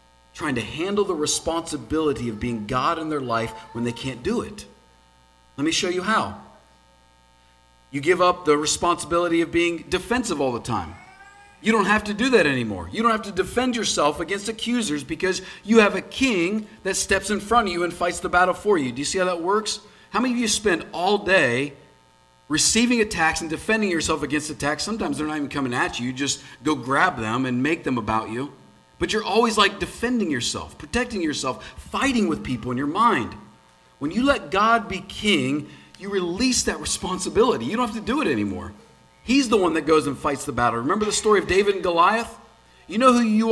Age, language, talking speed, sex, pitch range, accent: 40-59, English, 210 wpm, male, 145-220 Hz, American